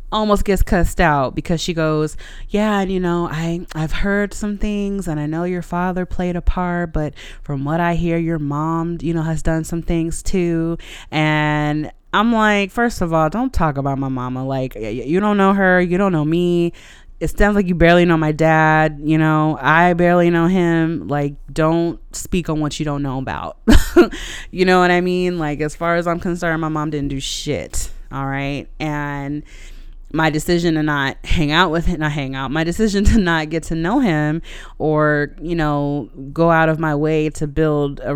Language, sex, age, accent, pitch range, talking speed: English, female, 20-39, American, 145-175 Hz, 205 wpm